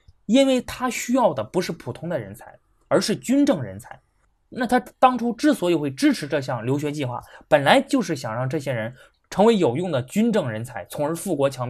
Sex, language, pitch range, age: male, Chinese, 130-215 Hz, 20-39